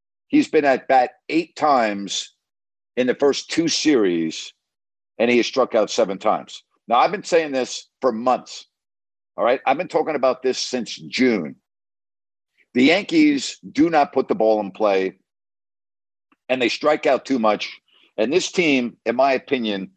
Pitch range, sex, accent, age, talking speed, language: 100-135 Hz, male, American, 50-69, 165 wpm, English